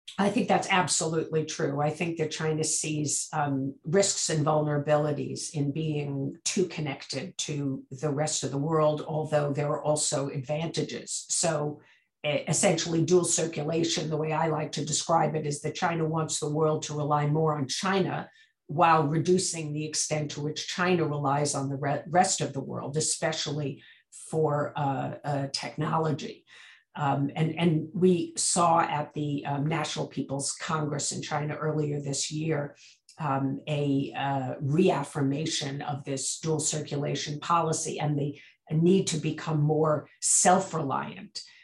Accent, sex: American, female